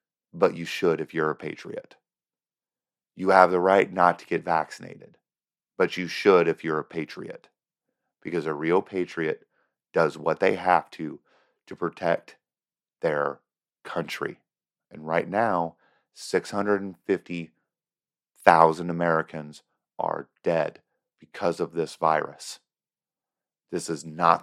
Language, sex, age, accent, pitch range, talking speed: English, male, 40-59, American, 80-95 Hz, 120 wpm